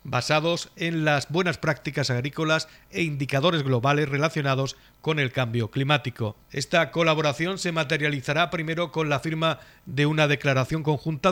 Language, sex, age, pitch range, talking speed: Spanish, male, 50-69, 140-155 Hz, 140 wpm